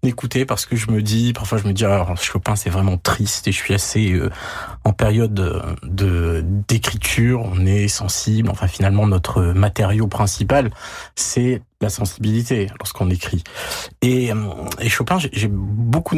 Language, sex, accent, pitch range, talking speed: French, male, French, 100-125 Hz, 165 wpm